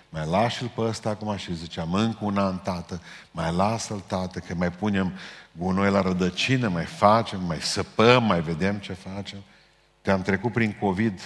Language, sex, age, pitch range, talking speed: Romanian, male, 50-69, 80-105 Hz, 175 wpm